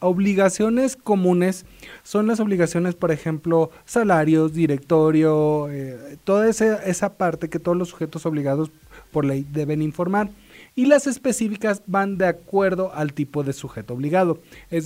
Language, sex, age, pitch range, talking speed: Spanish, male, 30-49, 155-195 Hz, 140 wpm